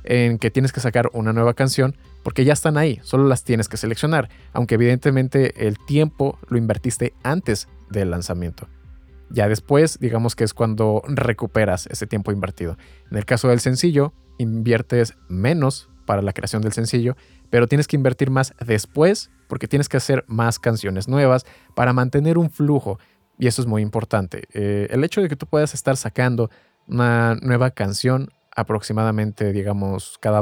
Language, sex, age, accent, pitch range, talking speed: Spanish, male, 20-39, Mexican, 110-135 Hz, 170 wpm